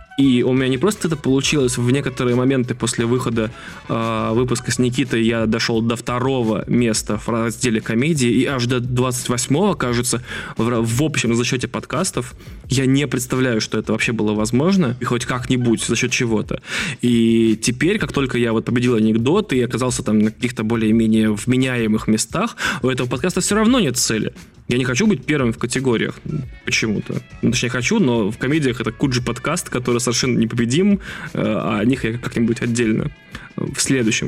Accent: native